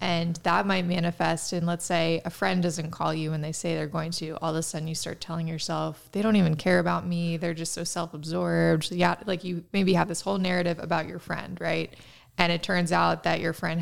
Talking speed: 240 wpm